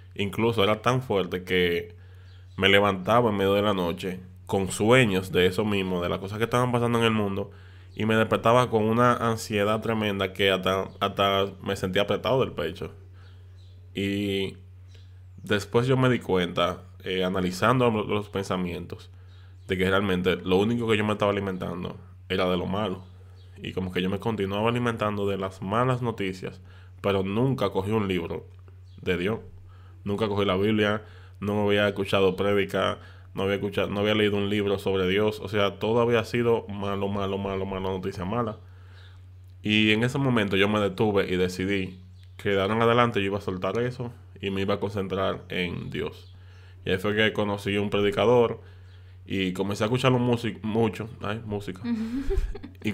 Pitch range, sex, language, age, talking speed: 95-110 Hz, male, Spanish, 10-29, 175 wpm